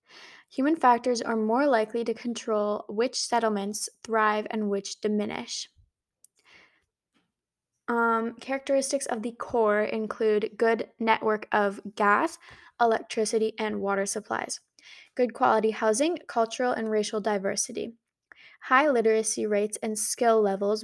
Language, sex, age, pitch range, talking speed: English, female, 10-29, 205-230 Hz, 115 wpm